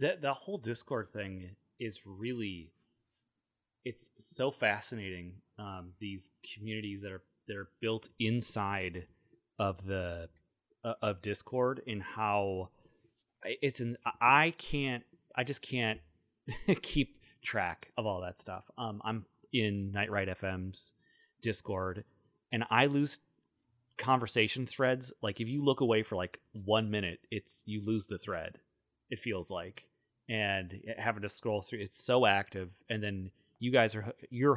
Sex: male